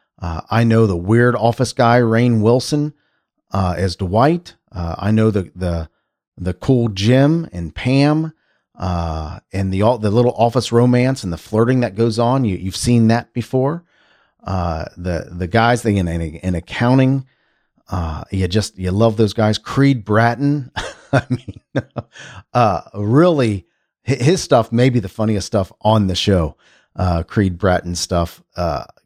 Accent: American